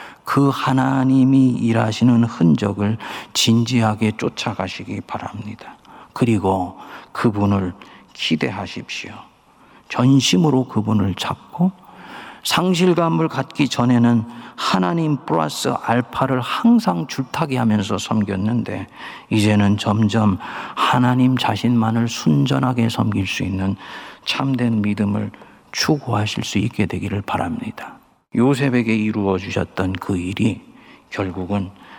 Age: 40-59